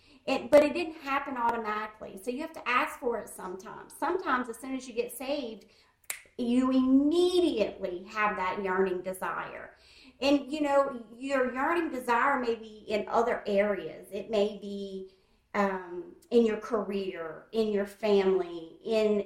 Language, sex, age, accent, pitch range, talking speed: English, female, 40-59, American, 200-255 Hz, 150 wpm